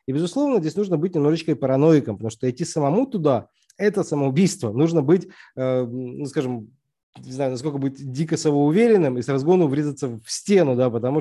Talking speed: 165 wpm